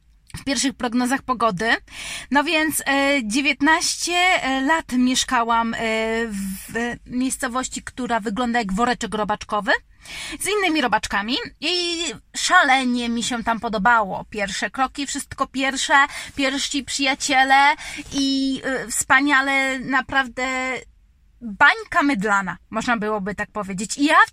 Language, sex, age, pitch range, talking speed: Polish, female, 20-39, 225-275 Hz, 105 wpm